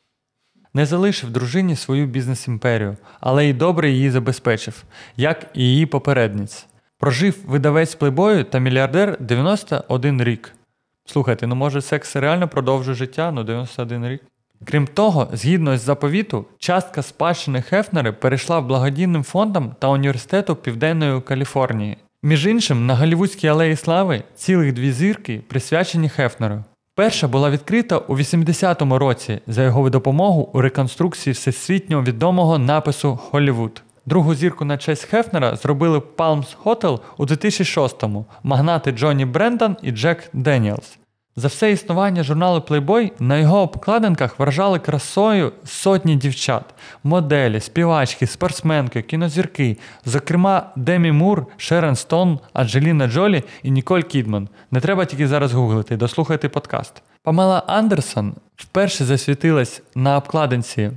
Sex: male